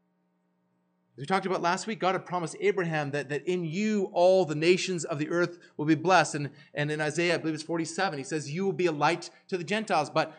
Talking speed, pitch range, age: 245 wpm, 135-195 Hz, 30-49